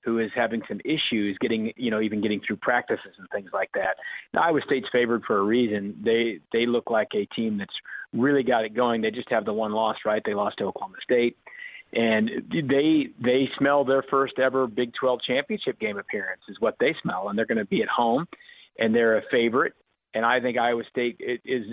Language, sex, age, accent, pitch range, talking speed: English, male, 40-59, American, 115-135 Hz, 220 wpm